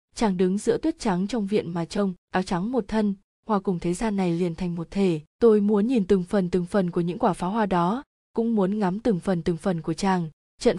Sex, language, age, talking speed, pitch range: female, Vietnamese, 20-39, 250 wpm, 185-225 Hz